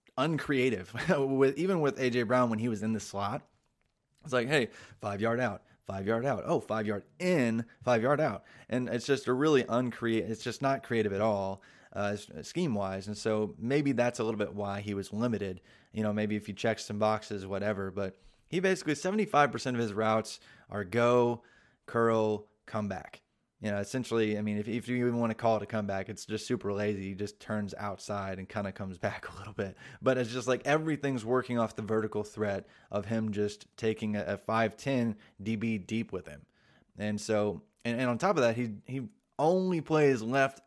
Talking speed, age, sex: 210 wpm, 20-39, male